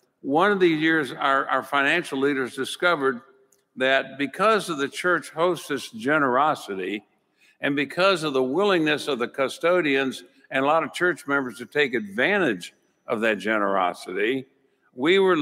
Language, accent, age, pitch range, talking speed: English, American, 60-79, 135-175 Hz, 150 wpm